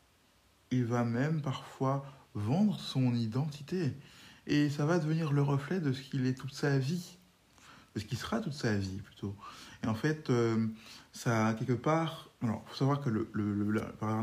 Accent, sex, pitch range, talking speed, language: French, male, 110-140 Hz, 175 wpm, French